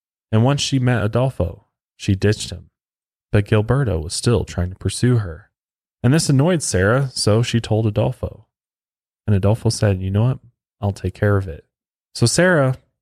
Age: 20-39